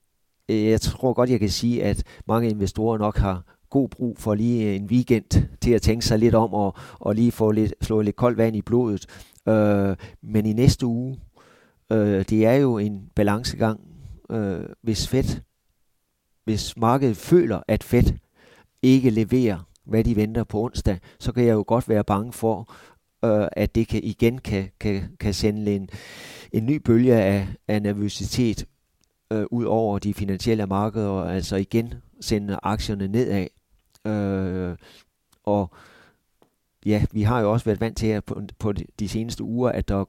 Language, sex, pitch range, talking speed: Danish, male, 100-115 Hz, 165 wpm